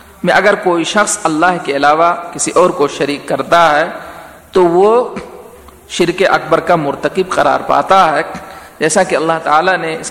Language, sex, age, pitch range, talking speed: Urdu, male, 50-69, 150-200 Hz, 165 wpm